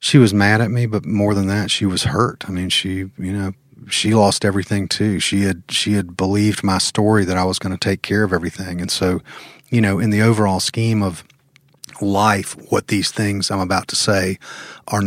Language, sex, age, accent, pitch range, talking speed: English, male, 40-59, American, 95-110 Hz, 220 wpm